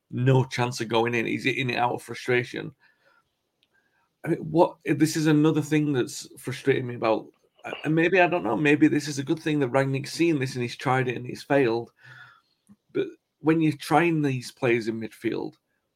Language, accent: English, British